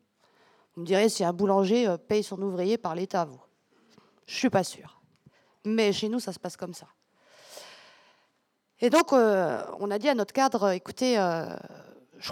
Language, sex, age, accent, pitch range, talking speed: French, female, 50-69, French, 190-245 Hz, 180 wpm